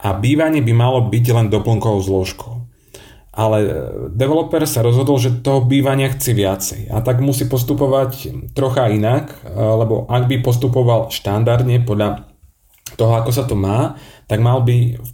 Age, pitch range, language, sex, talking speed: 30-49, 110-130 Hz, Slovak, male, 150 wpm